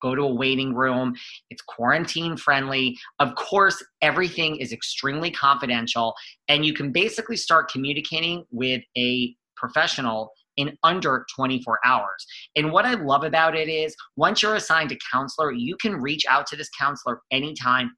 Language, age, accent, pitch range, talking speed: English, 30-49, American, 125-160 Hz, 155 wpm